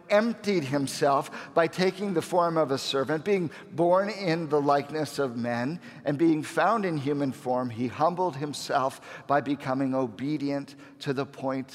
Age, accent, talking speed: 50-69, American, 160 wpm